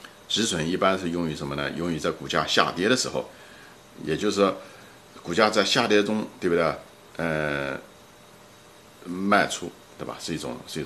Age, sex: 50-69, male